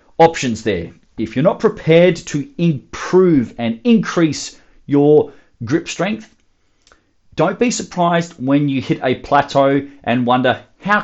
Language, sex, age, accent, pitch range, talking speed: English, male, 30-49, Australian, 120-180 Hz, 130 wpm